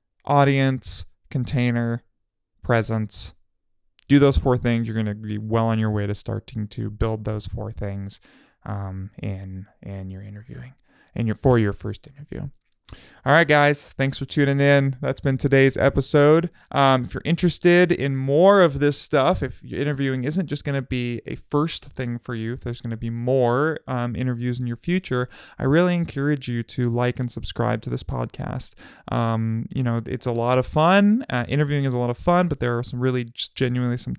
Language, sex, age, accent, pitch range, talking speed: English, male, 20-39, American, 110-140 Hz, 195 wpm